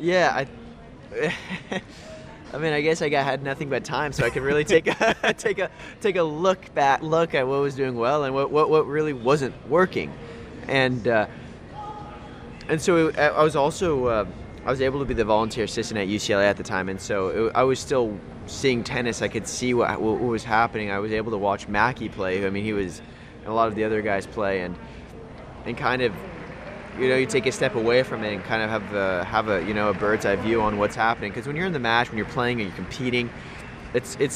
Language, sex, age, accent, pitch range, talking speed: English, male, 20-39, American, 110-140 Hz, 240 wpm